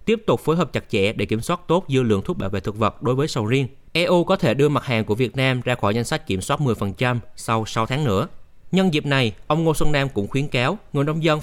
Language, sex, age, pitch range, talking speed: Vietnamese, male, 20-39, 110-150 Hz, 285 wpm